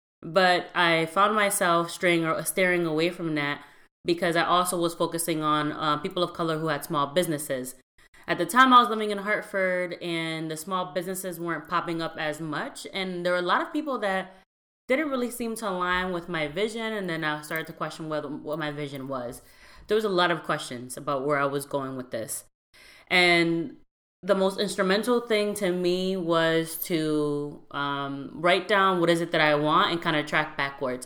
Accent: American